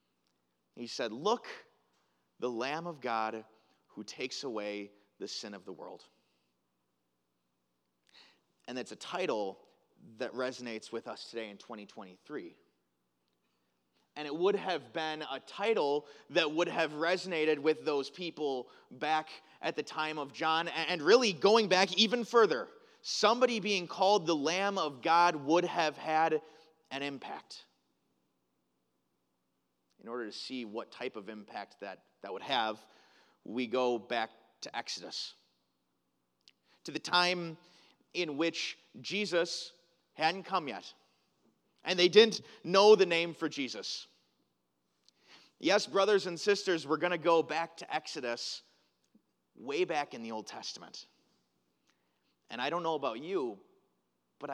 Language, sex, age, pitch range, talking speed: English, male, 30-49, 105-175 Hz, 135 wpm